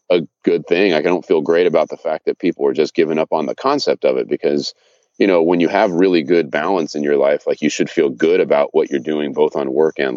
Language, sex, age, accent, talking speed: English, male, 30-49, American, 270 wpm